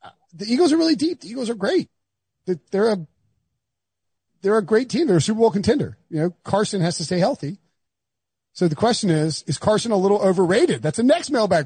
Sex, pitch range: male, 150-195 Hz